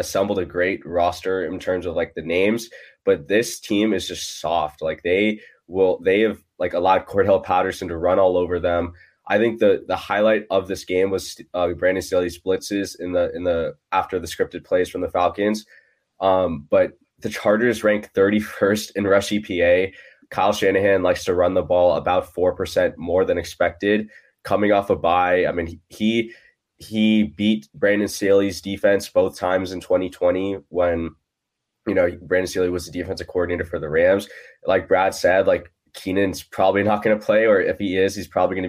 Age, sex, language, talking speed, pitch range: 20-39, male, English, 190 wpm, 90-105 Hz